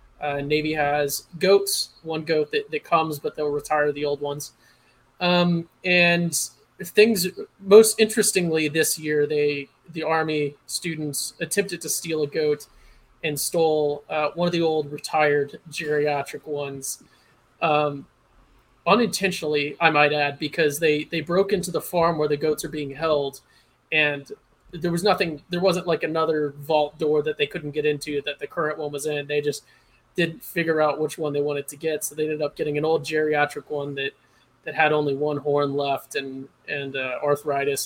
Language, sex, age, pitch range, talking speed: English, male, 30-49, 145-170 Hz, 175 wpm